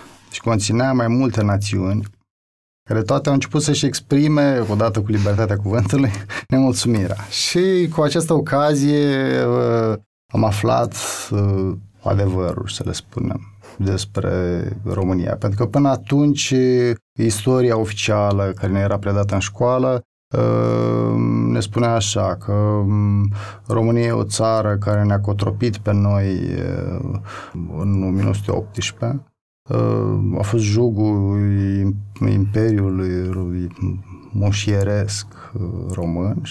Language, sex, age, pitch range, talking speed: Romanian, male, 30-49, 100-125 Hz, 100 wpm